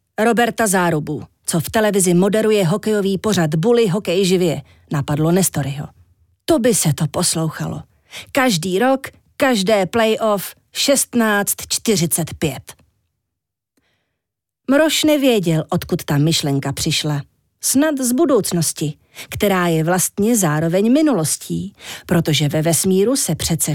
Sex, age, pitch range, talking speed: female, 40-59, 155-230 Hz, 105 wpm